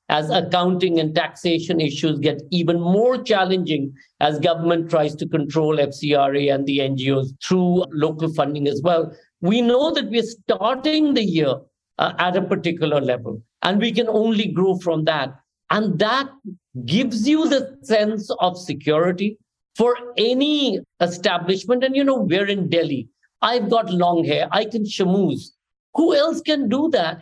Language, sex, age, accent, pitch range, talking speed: English, male, 50-69, Indian, 165-230 Hz, 155 wpm